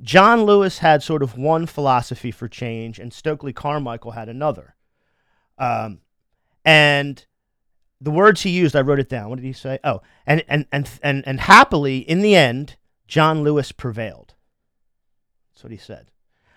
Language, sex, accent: English, male, American